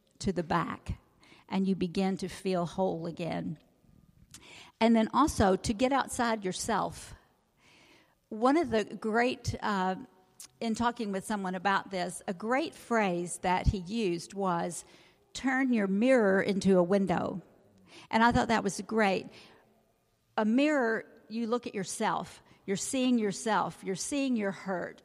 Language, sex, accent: English, female, American